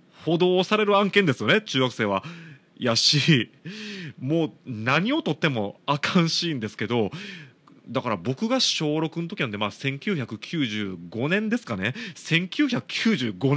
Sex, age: male, 30-49